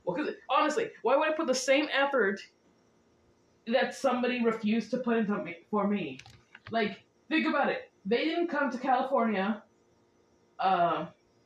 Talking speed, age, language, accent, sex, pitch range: 150 wpm, 20-39, English, American, female, 185-255 Hz